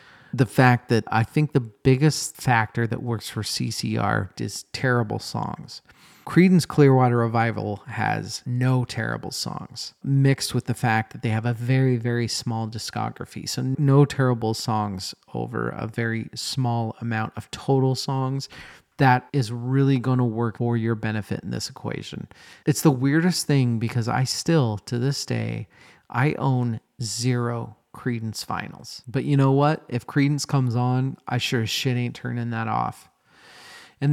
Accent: American